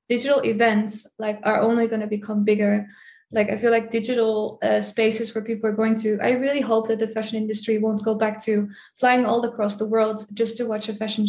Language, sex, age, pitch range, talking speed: English, female, 10-29, 215-230 Hz, 225 wpm